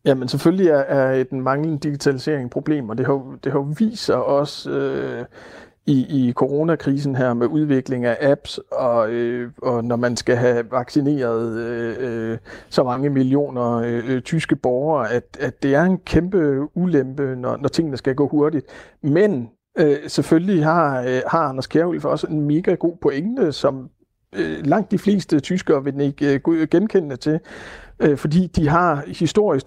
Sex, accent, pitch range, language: male, native, 130-160 Hz, Danish